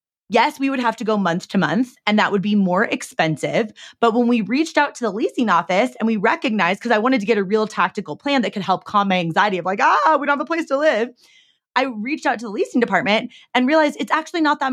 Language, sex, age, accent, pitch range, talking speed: English, female, 30-49, American, 205-285 Hz, 265 wpm